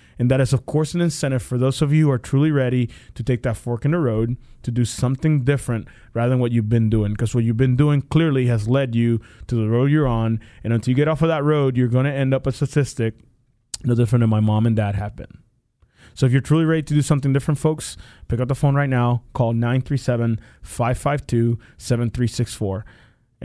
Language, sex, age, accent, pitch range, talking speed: English, male, 20-39, American, 115-140 Hz, 225 wpm